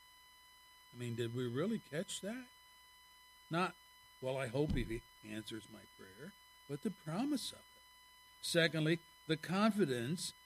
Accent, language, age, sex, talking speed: American, English, 60-79, male, 130 wpm